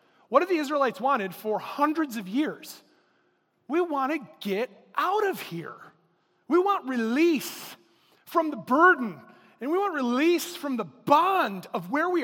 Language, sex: English, male